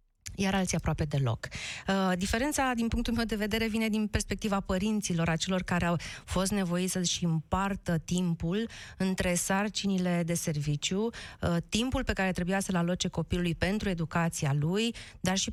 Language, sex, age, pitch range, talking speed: Romanian, female, 30-49, 155-200 Hz, 150 wpm